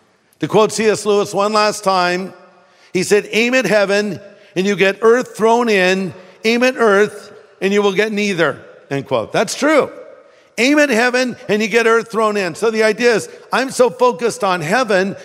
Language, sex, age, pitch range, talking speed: English, male, 50-69, 135-210 Hz, 190 wpm